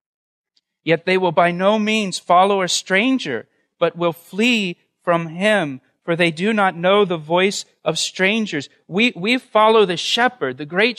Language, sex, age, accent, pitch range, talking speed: English, male, 40-59, American, 180-230 Hz, 165 wpm